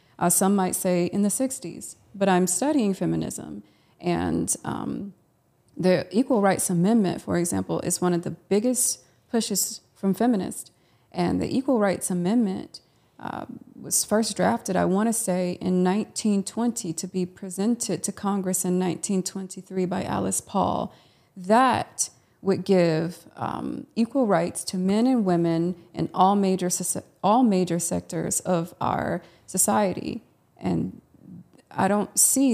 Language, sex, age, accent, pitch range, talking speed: English, female, 30-49, American, 180-210 Hz, 140 wpm